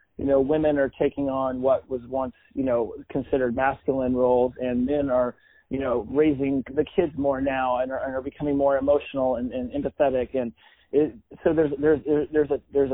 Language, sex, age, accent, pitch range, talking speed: English, male, 30-49, American, 135-165 Hz, 185 wpm